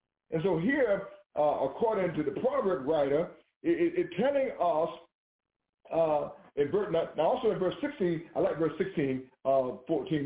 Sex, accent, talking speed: male, American, 165 wpm